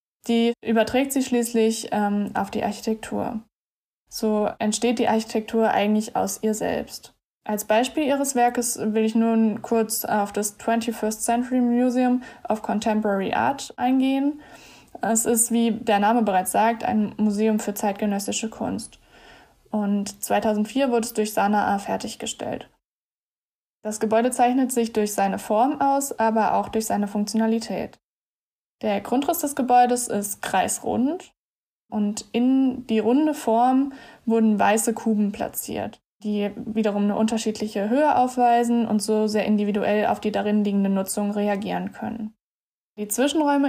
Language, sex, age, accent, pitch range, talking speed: German, female, 10-29, German, 215-245 Hz, 135 wpm